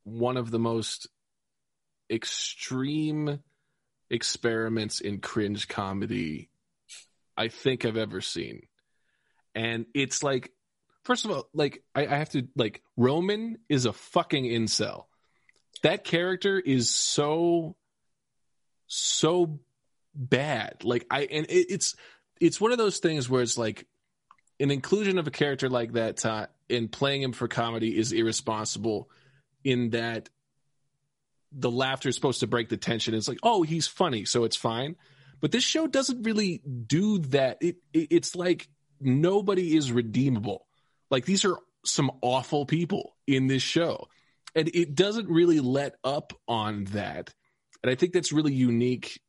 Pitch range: 120-160 Hz